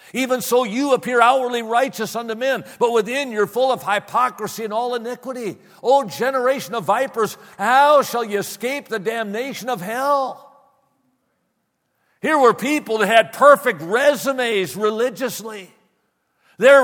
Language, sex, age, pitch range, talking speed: English, male, 50-69, 195-260 Hz, 135 wpm